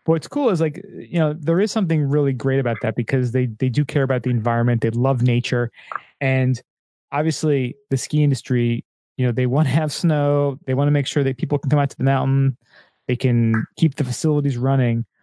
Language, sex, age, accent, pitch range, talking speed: English, male, 20-39, American, 120-150 Hz, 220 wpm